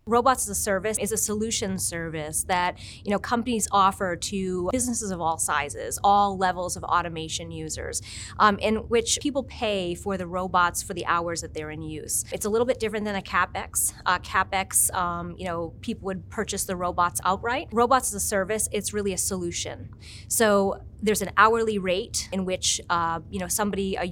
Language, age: English, 30-49